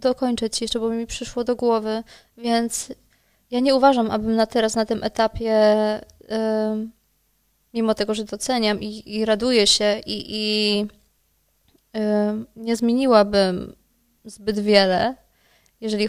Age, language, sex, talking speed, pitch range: 20-39, Polish, female, 125 wpm, 215-245 Hz